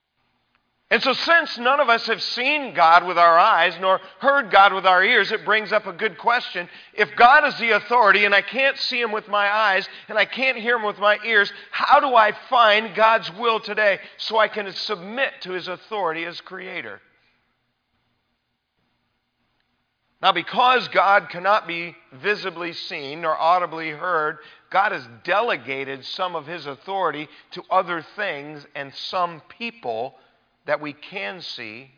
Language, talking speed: English, 165 wpm